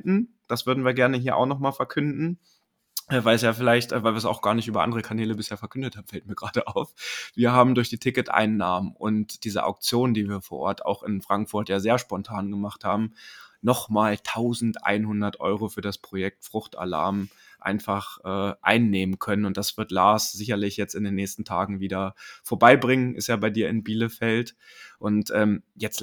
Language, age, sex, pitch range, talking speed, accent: German, 20-39, male, 105-125 Hz, 185 wpm, German